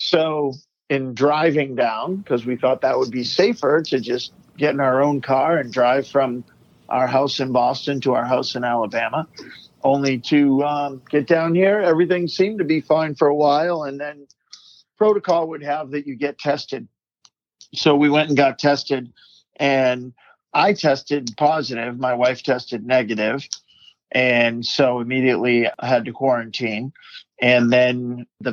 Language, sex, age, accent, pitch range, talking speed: English, male, 50-69, American, 125-160 Hz, 160 wpm